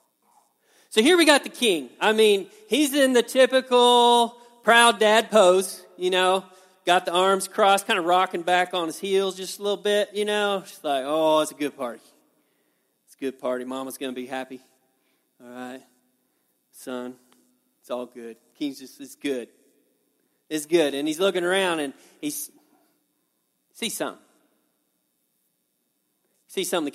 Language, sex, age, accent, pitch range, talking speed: English, male, 40-59, American, 180-245 Hz, 160 wpm